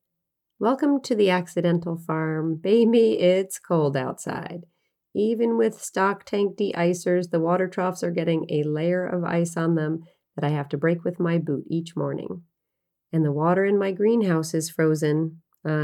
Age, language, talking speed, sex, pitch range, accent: 40-59, English, 165 wpm, female, 160-190 Hz, American